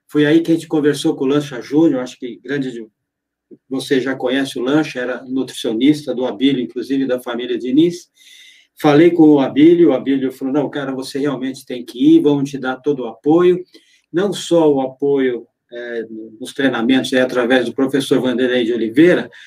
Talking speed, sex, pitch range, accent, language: 185 wpm, male, 130-160 Hz, Brazilian, Portuguese